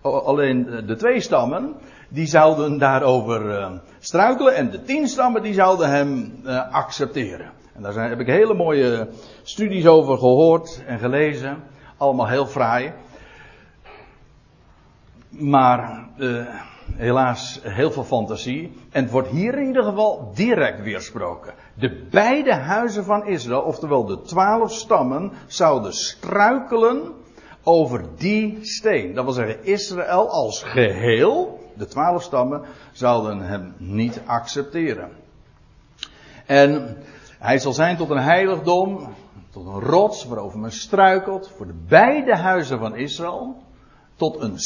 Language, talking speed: Dutch, 130 wpm